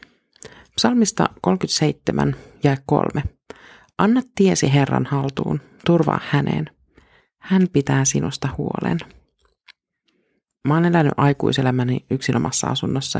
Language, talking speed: Finnish, 80 wpm